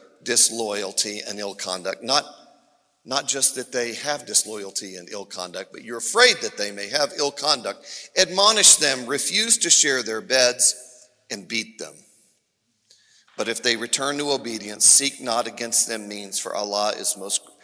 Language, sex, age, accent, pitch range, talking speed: English, male, 40-59, American, 120-180 Hz, 165 wpm